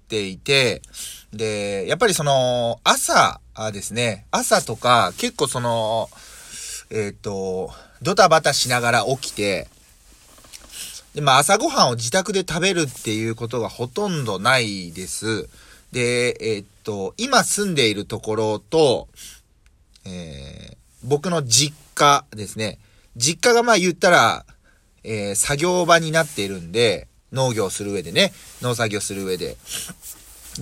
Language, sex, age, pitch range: Japanese, male, 30-49, 100-170 Hz